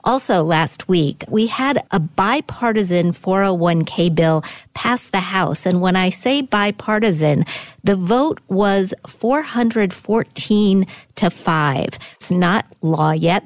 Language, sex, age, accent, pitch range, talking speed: English, female, 40-59, American, 165-200 Hz, 120 wpm